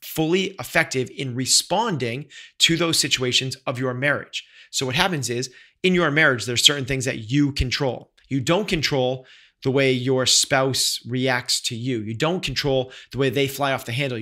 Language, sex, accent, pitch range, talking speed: English, male, American, 125-160 Hz, 180 wpm